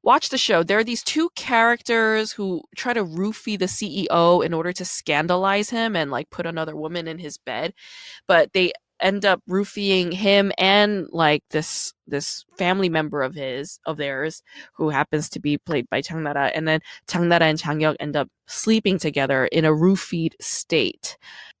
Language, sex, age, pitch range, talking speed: English, female, 20-39, 160-215 Hz, 180 wpm